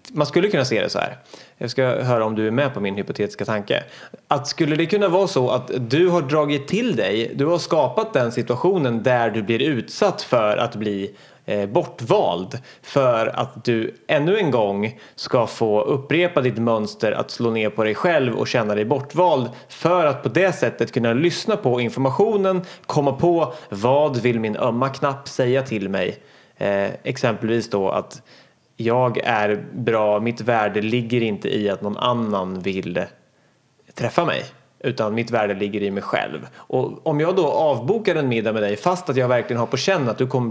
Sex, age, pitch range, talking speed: male, 30-49, 110-145 Hz, 190 wpm